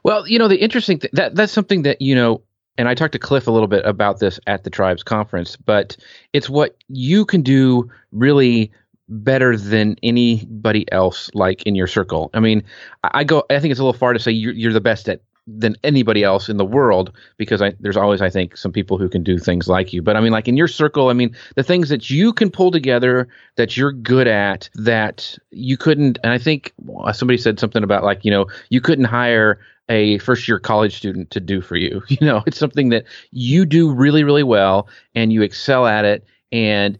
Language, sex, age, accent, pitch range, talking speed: English, male, 30-49, American, 105-135 Hz, 225 wpm